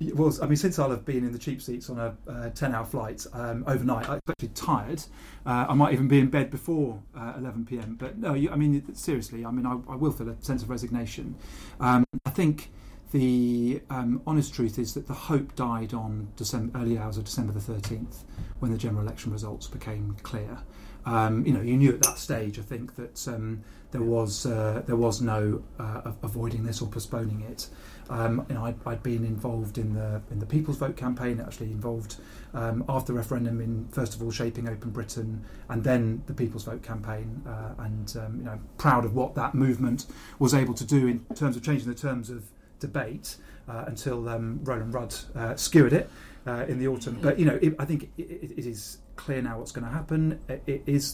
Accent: British